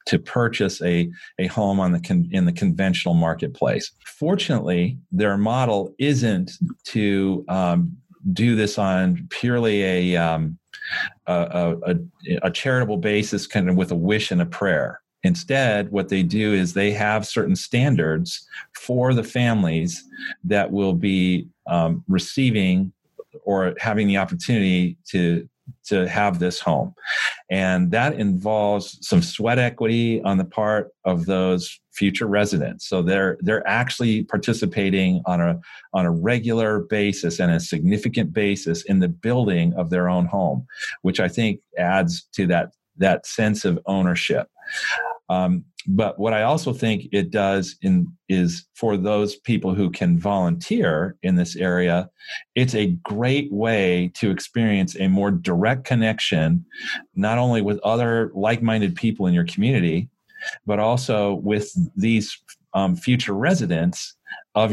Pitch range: 90-125 Hz